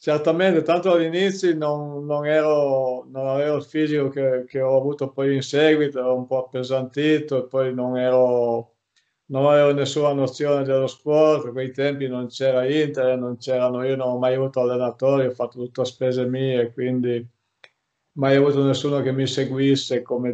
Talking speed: 175 wpm